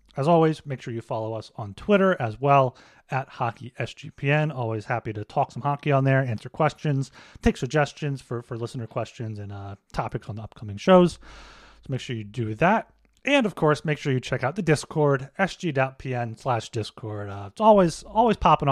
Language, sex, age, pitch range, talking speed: English, male, 30-49, 120-150 Hz, 185 wpm